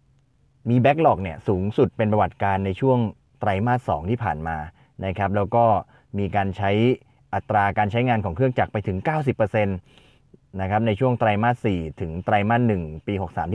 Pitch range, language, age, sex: 95-125 Hz, Thai, 30-49, male